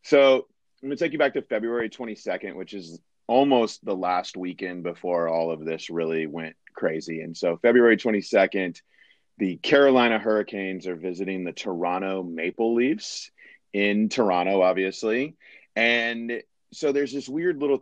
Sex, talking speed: male, 150 wpm